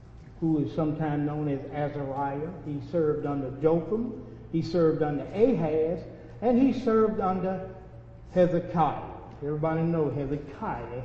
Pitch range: 125-160 Hz